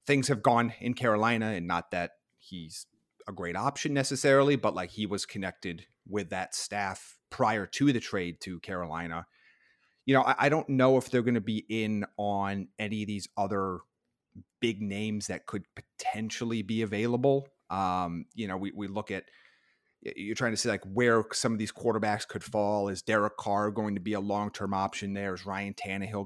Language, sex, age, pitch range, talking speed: English, male, 30-49, 100-120 Hz, 185 wpm